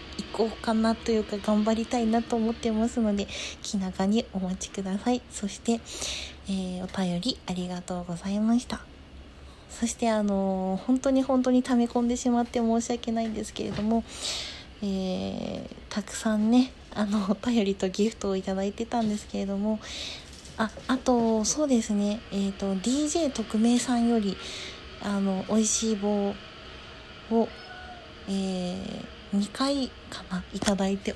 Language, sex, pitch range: Japanese, female, 195-230 Hz